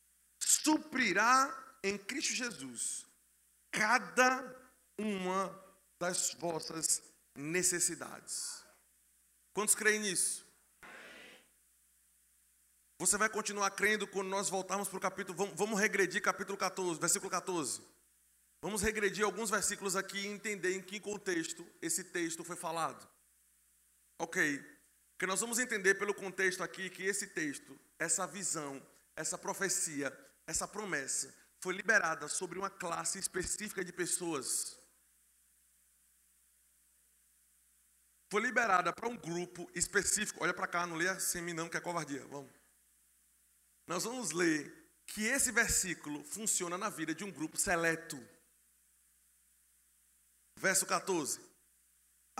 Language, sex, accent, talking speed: Portuguese, male, Brazilian, 115 wpm